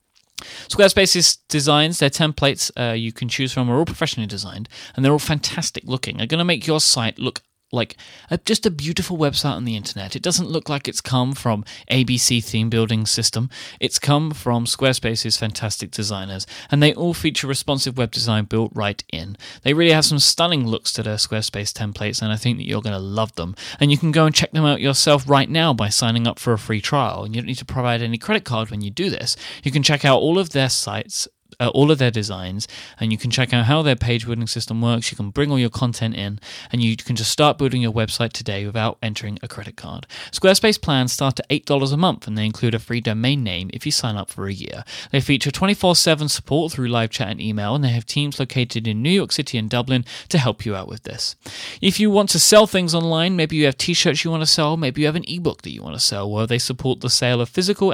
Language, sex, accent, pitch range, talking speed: English, male, British, 115-150 Hz, 245 wpm